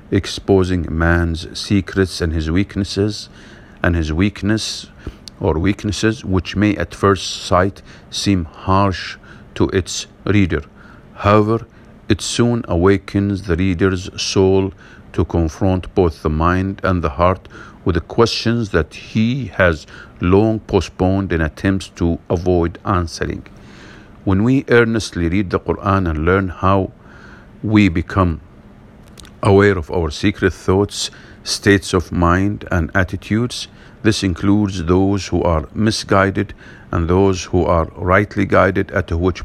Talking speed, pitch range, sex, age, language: 130 wpm, 90-100 Hz, male, 50-69, English